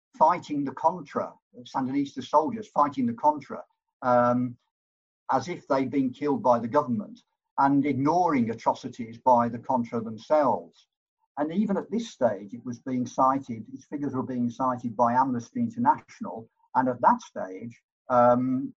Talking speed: 145 wpm